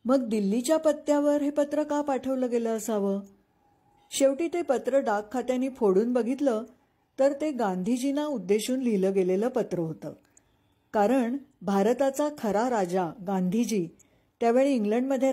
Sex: female